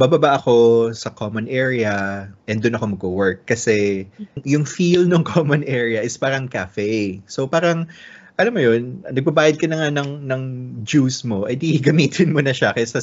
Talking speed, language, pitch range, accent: 160 wpm, Filipino, 105-150 Hz, native